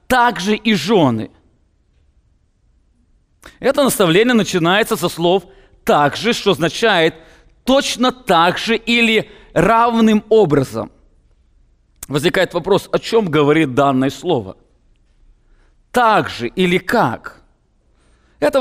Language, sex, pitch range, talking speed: English, male, 155-220 Hz, 90 wpm